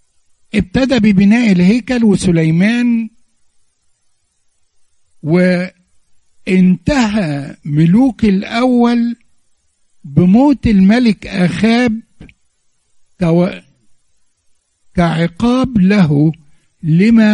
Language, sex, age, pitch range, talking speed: Arabic, male, 60-79, 130-215 Hz, 45 wpm